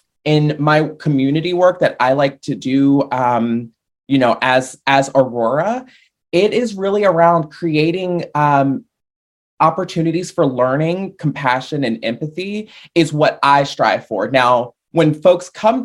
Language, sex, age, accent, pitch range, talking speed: English, male, 20-39, American, 120-155 Hz, 135 wpm